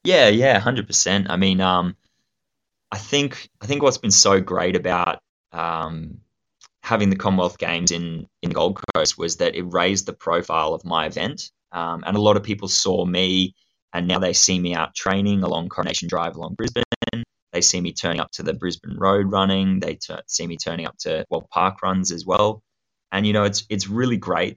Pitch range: 90-100 Hz